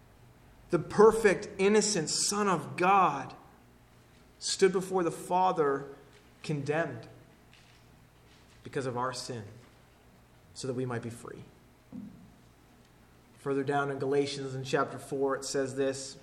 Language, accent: English, American